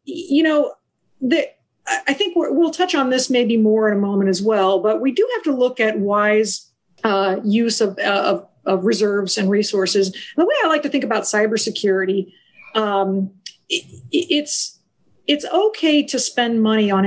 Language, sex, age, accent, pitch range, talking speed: English, female, 50-69, American, 205-255 Hz, 180 wpm